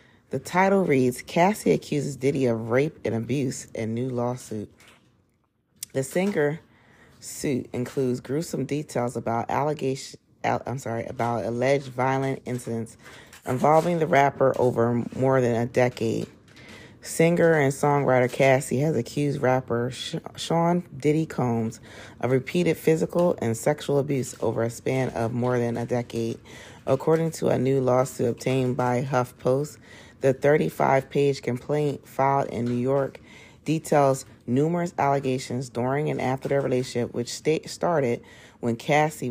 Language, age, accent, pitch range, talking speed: English, 40-59, American, 115-140 Hz, 130 wpm